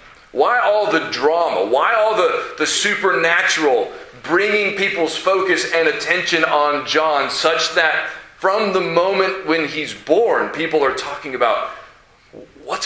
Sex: male